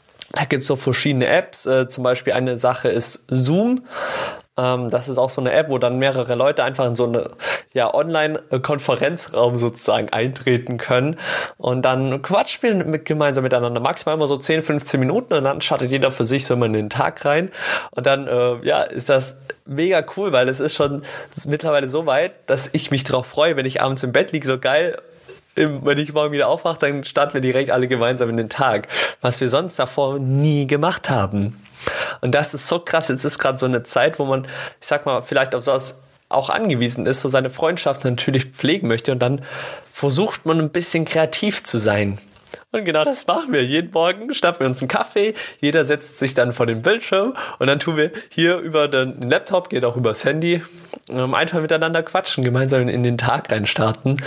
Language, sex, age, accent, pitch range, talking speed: German, male, 20-39, German, 125-155 Hz, 200 wpm